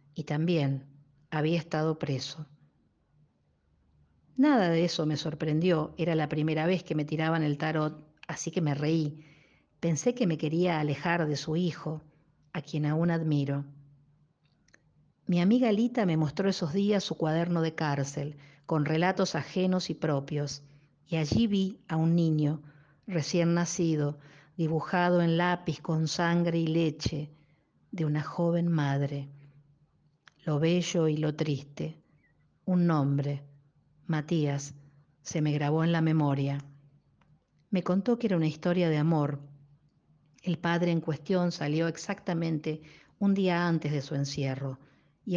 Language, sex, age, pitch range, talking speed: Spanish, female, 50-69, 145-170 Hz, 140 wpm